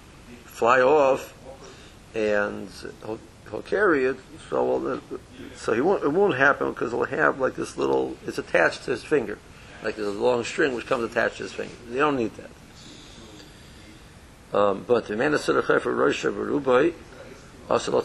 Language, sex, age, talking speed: English, male, 60-79, 125 wpm